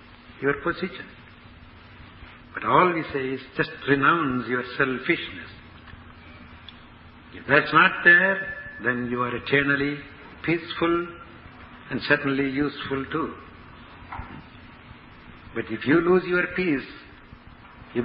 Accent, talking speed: Indian, 105 wpm